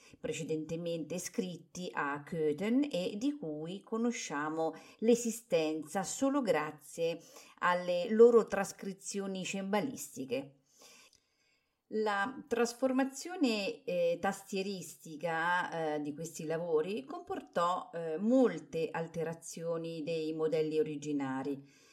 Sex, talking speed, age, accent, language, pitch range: female, 80 wpm, 40-59, native, Italian, 160-235 Hz